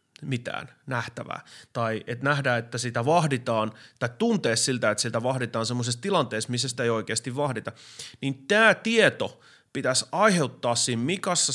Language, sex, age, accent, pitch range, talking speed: Finnish, male, 30-49, native, 115-155 Hz, 145 wpm